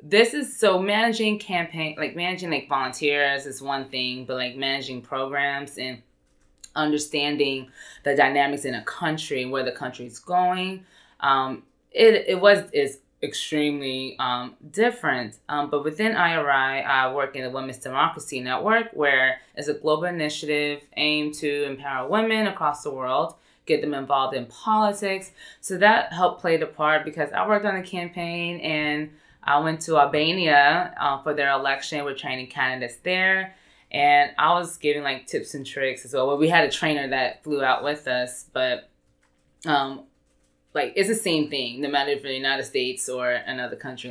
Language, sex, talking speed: English, female, 165 wpm